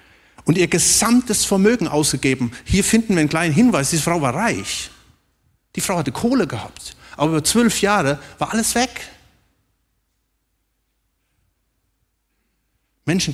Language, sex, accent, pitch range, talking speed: German, male, German, 125-185 Hz, 125 wpm